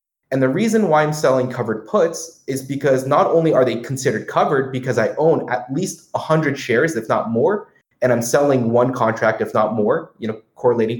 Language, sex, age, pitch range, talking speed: English, male, 30-49, 120-155 Hz, 200 wpm